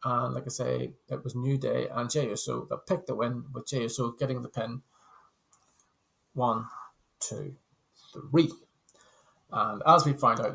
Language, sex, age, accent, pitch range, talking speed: English, male, 30-49, British, 125-145 Hz, 160 wpm